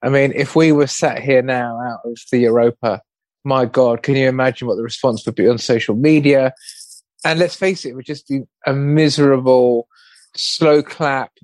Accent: British